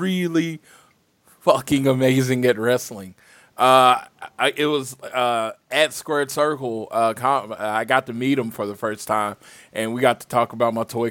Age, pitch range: 20-39, 115-155 Hz